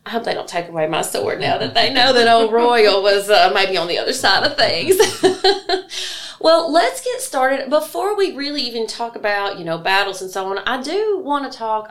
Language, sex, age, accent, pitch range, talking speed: English, female, 30-49, American, 185-255 Hz, 225 wpm